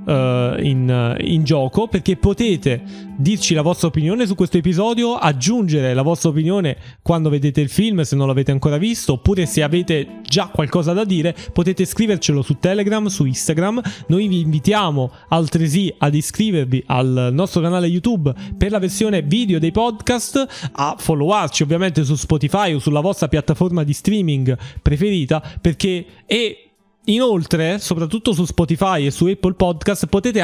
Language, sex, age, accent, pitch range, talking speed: Italian, male, 20-39, native, 150-200 Hz, 150 wpm